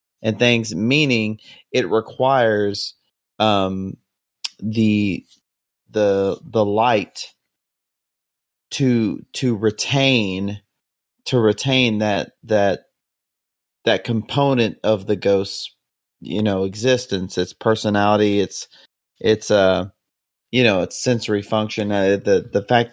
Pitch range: 100-120 Hz